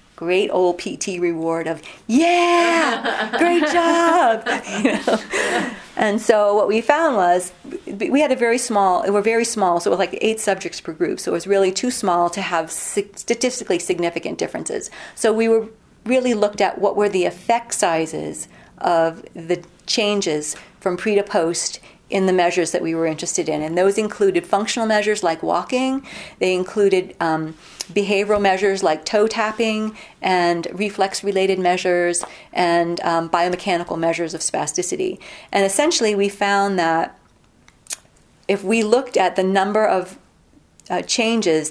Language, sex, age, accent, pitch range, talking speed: English, female, 40-59, American, 175-225 Hz, 155 wpm